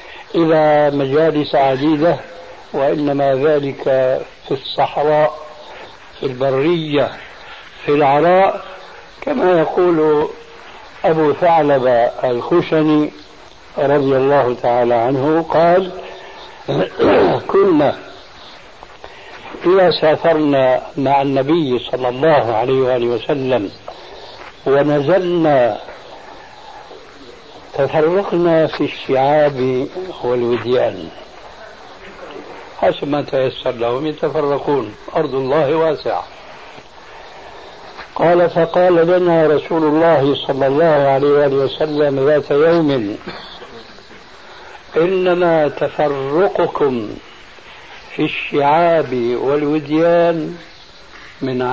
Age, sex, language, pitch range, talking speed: 60-79, male, Arabic, 135-165 Hz, 70 wpm